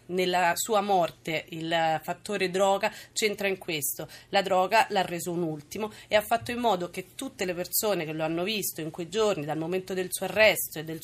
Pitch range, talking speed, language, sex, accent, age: 170-210 Hz, 205 wpm, Italian, female, native, 30-49